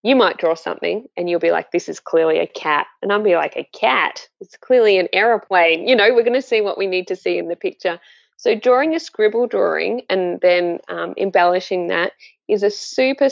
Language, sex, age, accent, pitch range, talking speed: English, female, 20-39, Australian, 180-255 Hz, 225 wpm